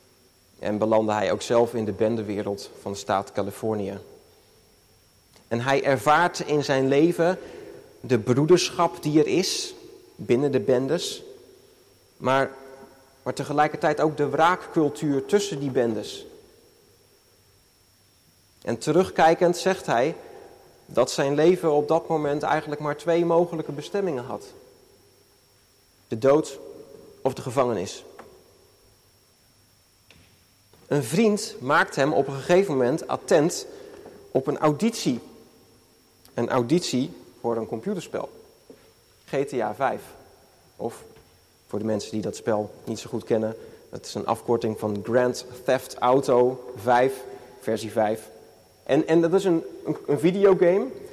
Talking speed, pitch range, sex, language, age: 125 wpm, 115-180 Hz, male, Dutch, 30-49